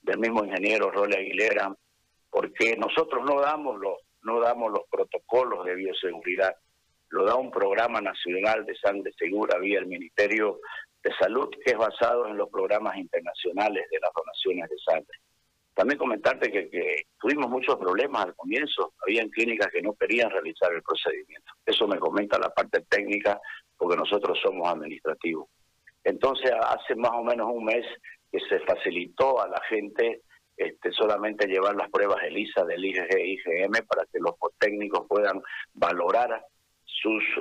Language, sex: Spanish, male